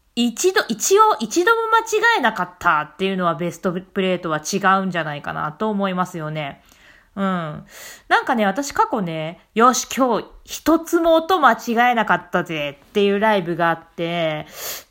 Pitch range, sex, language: 170-270 Hz, female, Japanese